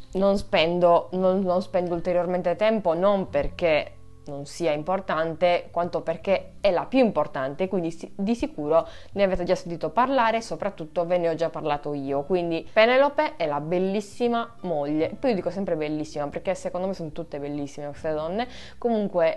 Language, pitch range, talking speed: Italian, 155-195 Hz, 165 wpm